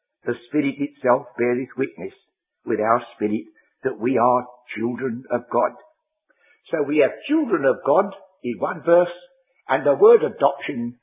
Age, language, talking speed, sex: 60-79, English, 145 wpm, male